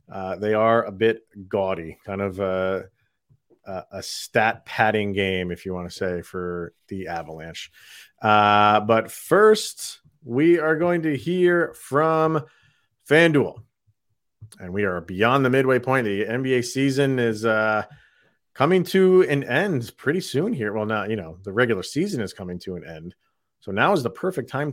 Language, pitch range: English, 105-140 Hz